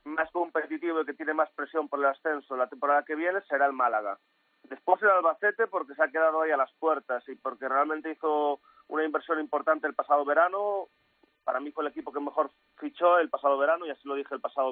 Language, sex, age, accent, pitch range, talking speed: Spanish, male, 30-49, Spanish, 145-180 Hz, 225 wpm